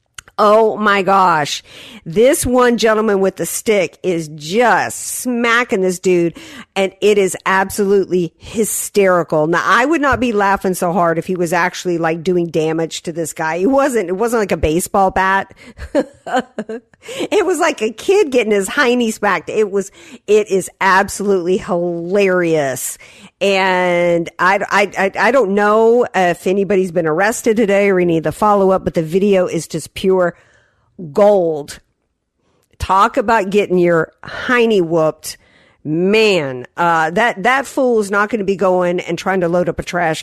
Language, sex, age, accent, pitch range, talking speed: English, female, 50-69, American, 165-210 Hz, 160 wpm